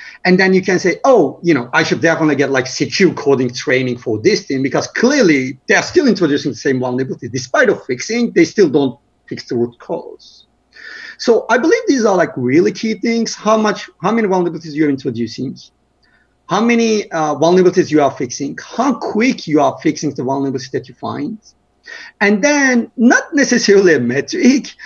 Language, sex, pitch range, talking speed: English, male, 145-220 Hz, 185 wpm